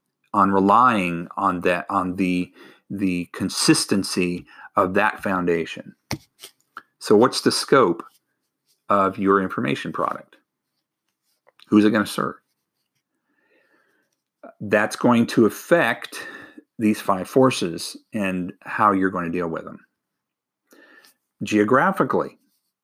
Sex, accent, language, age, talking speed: male, American, English, 50-69, 110 wpm